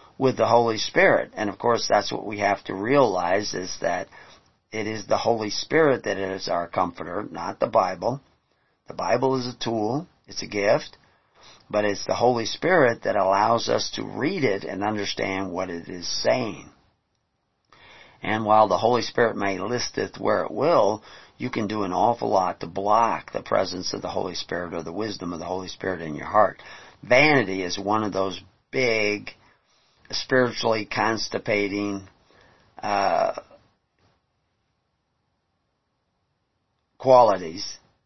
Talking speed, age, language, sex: 155 wpm, 50-69, English, male